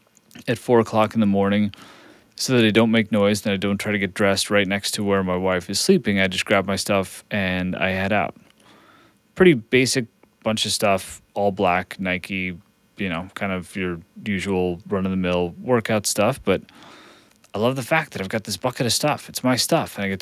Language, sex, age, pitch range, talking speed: English, male, 30-49, 105-140 Hz, 210 wpm